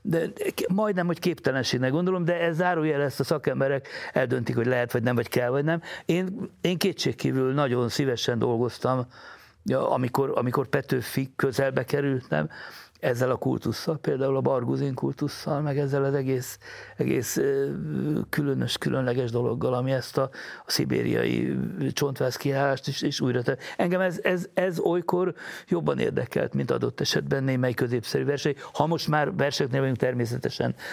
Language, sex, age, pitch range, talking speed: Hungarian, male, 60-79, 125-150 Hz, 145 wpm